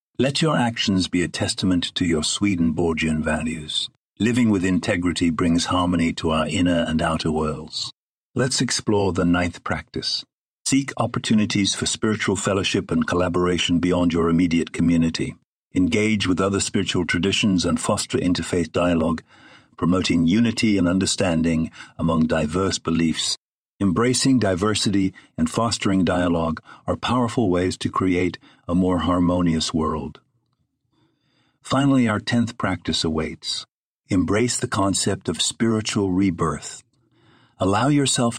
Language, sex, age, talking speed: English, male, 60-79, 125 wpm